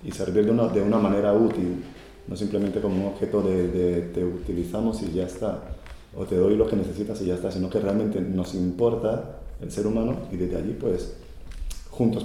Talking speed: 210 wpm